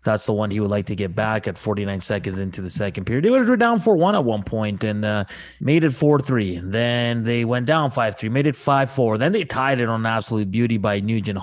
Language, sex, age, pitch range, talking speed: English, male, 30-49, 110-140 Hz, 235 wpm